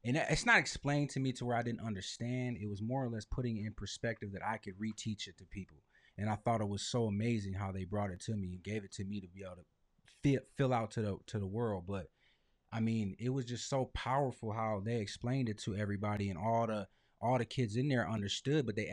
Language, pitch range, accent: English, 105-125 Hz, American